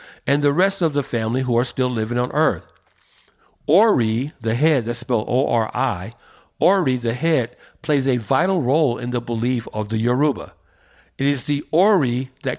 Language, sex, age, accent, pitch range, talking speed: English, male, 50-69, American, 120-155 Hz, 170 wpm